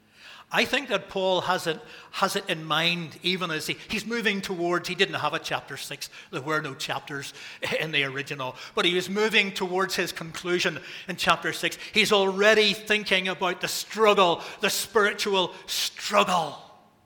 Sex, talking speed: male, 170 wpm